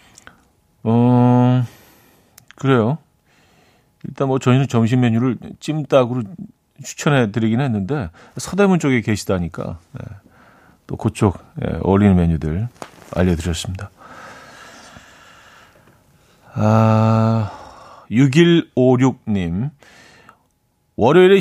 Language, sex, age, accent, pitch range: Korean, male, 40-59, native, 100-135 Hz